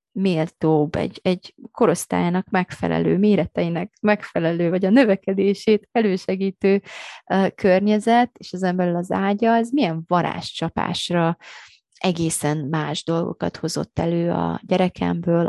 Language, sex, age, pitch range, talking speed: Hungarian, female, 20-39, 160-190 Hz, 110 wpm